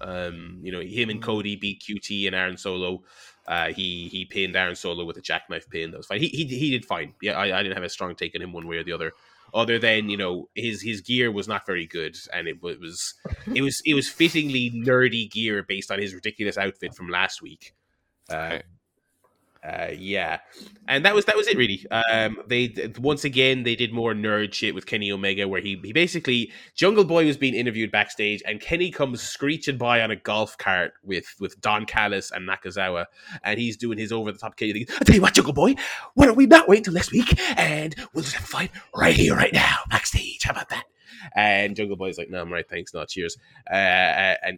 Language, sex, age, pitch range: English, male, 20-39, 100-140 Hz